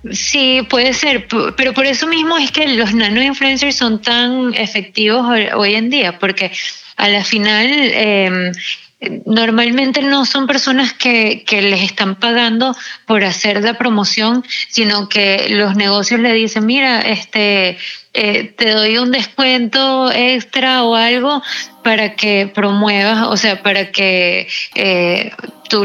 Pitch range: 195-245 Hz